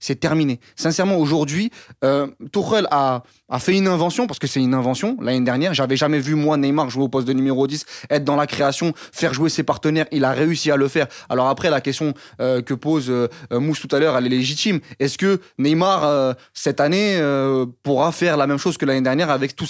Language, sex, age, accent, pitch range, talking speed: French, male, 20-39, French, 135-170 Hz, 230 wpm